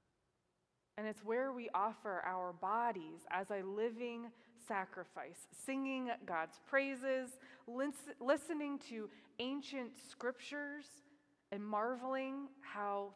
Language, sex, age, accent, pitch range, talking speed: English, female, 20-39, American, 190-240 Hz, 95 wpm